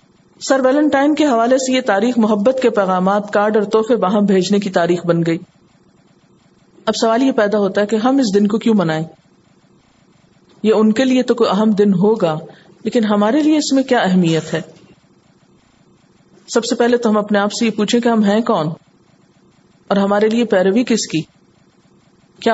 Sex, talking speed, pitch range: female, 185 wpm, 185-235 Hz